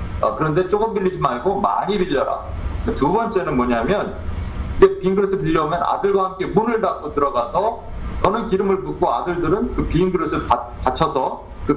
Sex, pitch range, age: male, 110-175 Hz, 40-59